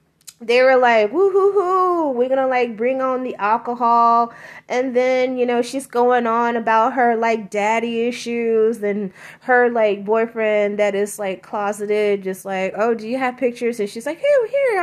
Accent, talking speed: American, 180 wpm